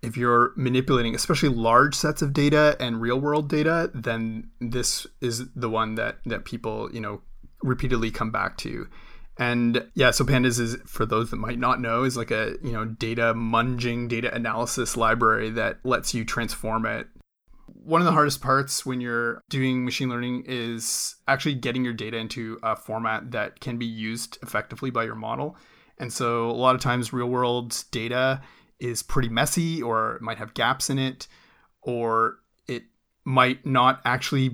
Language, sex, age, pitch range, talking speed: English, male, 30-49, 115-135 Hz, 175 wpm